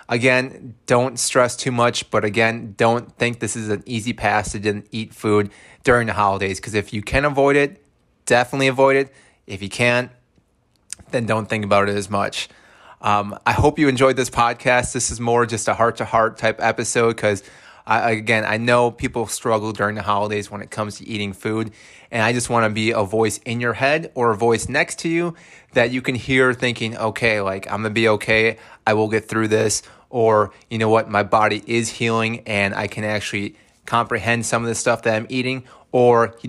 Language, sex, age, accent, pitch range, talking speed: English, male, 20-39, American, 105-125 Hz, 205 wpm